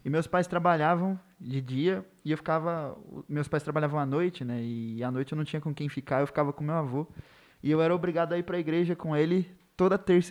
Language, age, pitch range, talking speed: Portuguese, 20-39, 150-185 Hz, 245 wpm